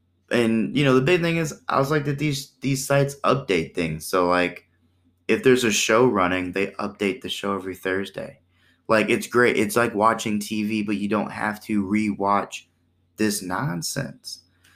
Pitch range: 95-135 Hz